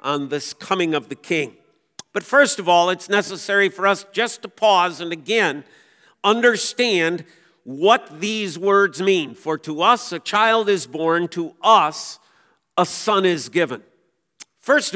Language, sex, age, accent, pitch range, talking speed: English, male, 50-69, American, 170-215 Hz, 150 wpm